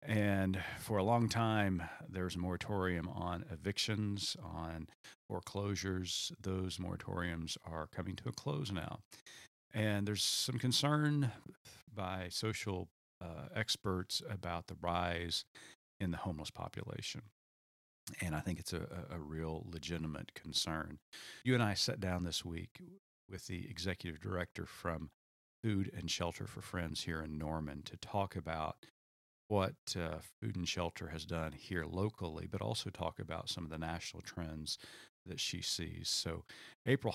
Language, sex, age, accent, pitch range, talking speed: English, male, 40-59, American, 80-105 Hz, 145 wpm